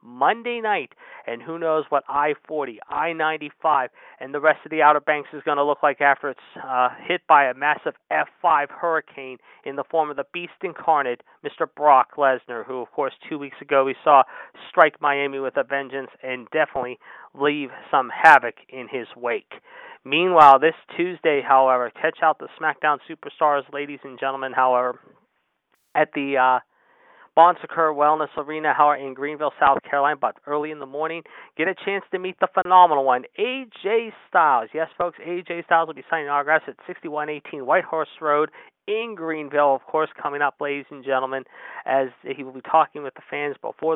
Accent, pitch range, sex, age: American, 140-165 Hz, male, 40-59